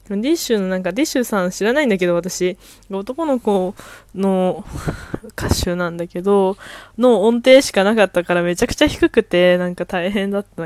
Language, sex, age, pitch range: Japanese, female, 20-39, 180-245 Hz